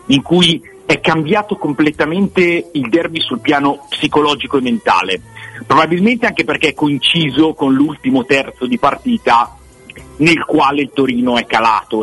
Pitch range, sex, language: 115-170 Hz, male, Italian